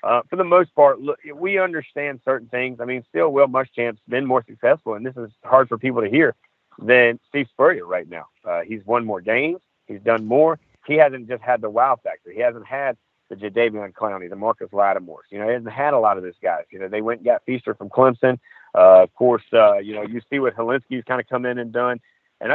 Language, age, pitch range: English, 40-59, 115-140 Hz